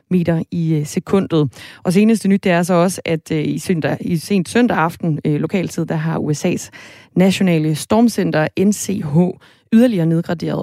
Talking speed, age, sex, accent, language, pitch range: 160 wpm, 30-49, female, native, Danish, 155-190 Hz